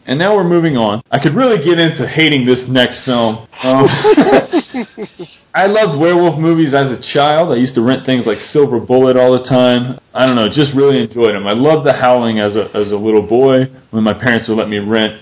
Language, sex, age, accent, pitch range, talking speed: English, male, 30-49, American, 115-160 Hz, 225 wpm